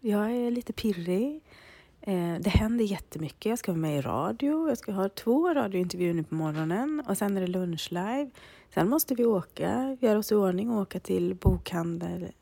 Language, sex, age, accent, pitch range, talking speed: Swedish, female, 30-49, native, 175-220 Hz, 195 wpm